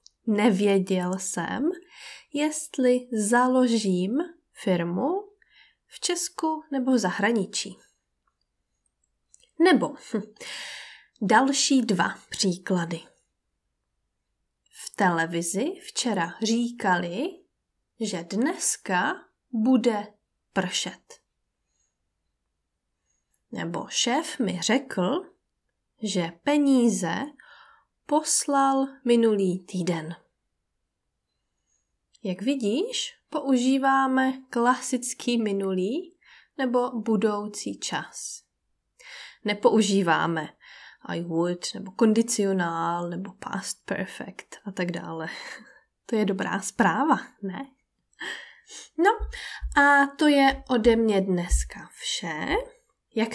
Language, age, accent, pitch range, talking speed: Czech, 20-39, native, 195-290 Hz, 70 wpm